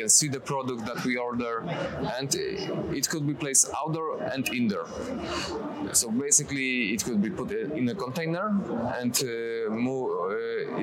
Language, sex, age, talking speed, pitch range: English, male, 20-39, 145 wpm, 115-160 Hz